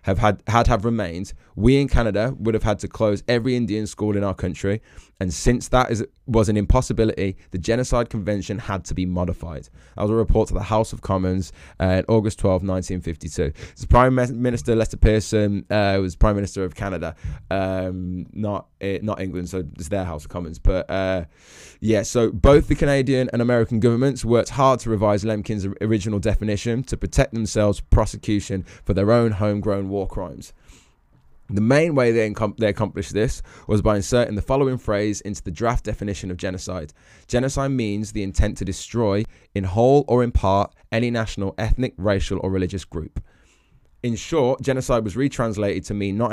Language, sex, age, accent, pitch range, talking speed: English, male, 20-39, British, 95-115 Hz, 185 wpm